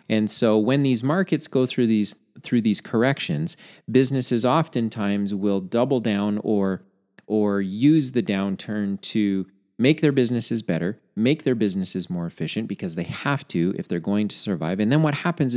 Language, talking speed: English, 170 wpm